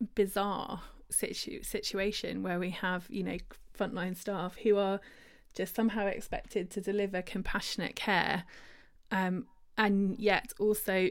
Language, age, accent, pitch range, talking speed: English, 20-39, British, 185-220 Hz, 125 wpm